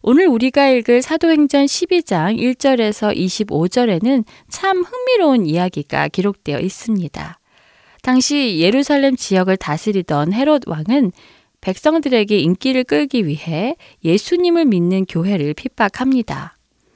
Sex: female